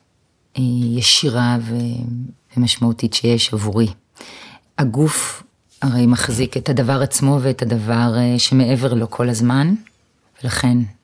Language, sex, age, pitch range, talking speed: Hebrew, female, 30-49, 120-140 Hz, 90 wpm